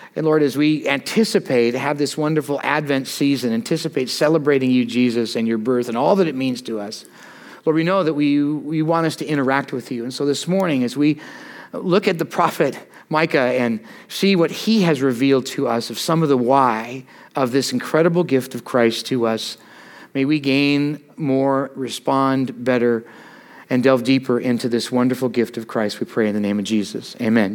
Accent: American